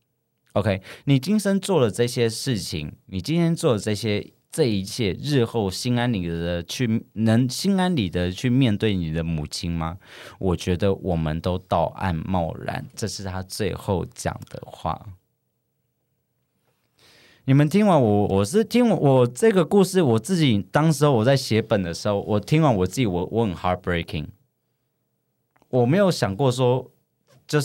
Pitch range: 95-130 Hz